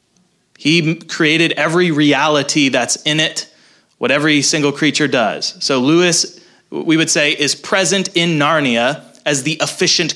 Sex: male